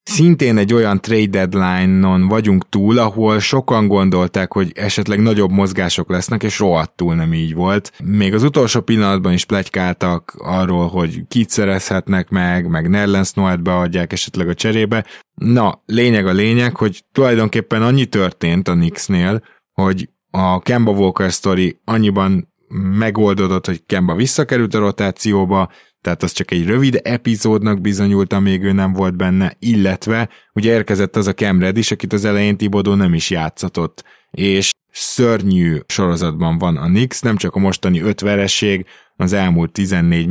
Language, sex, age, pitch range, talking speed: Hungarian, male, 20-39, 90-110 Hz, 145 wpm